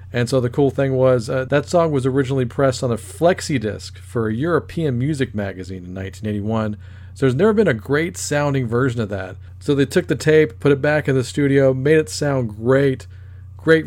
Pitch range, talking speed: 110-140 Hz, 210 wpm